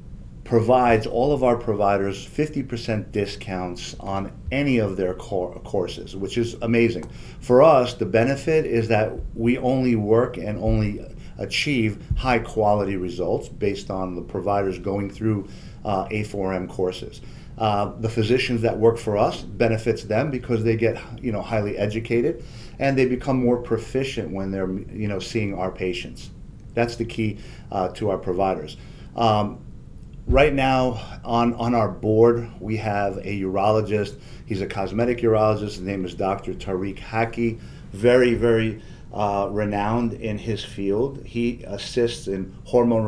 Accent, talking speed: American, 155 wpm